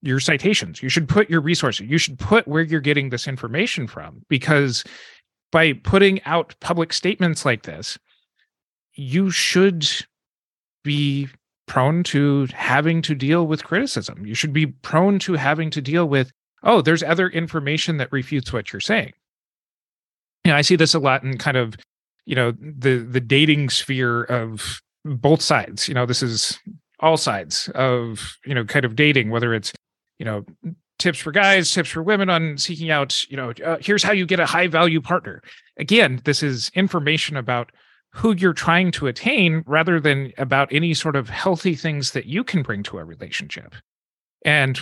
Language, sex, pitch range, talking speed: English, male, 130-170 Hz, 175 wpm